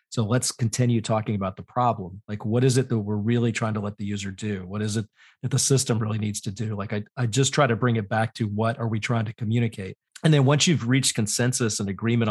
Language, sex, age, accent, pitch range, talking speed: English, male, 40-59, American, 105-125 Hz, 265 wpm